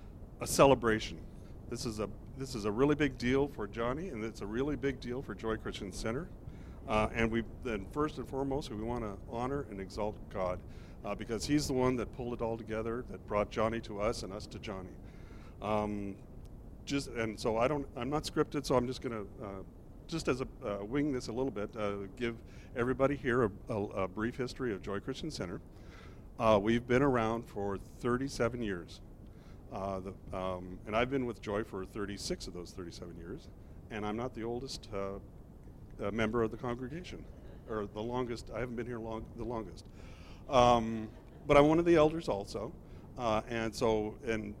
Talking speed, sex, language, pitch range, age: 195 wpm, male, English, 100-120 Hz, 50-69